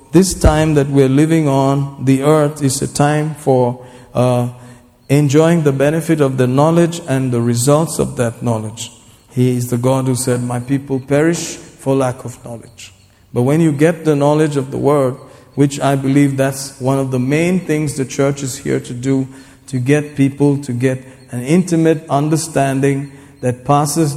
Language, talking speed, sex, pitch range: English, 180 wpm, male, 125-145 Hz